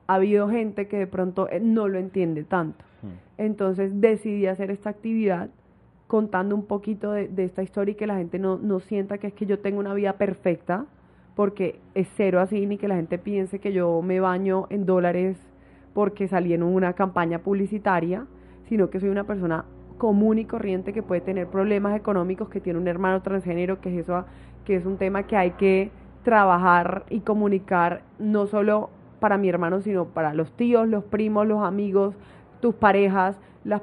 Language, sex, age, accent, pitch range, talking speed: Spanish, female, 20-39, Colombian, 180-205 Hz, 185 wpm